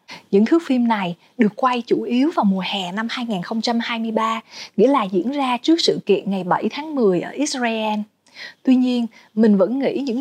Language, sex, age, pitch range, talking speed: Vietnamese, female, 20-39, 205-265 Hz, 190 wpm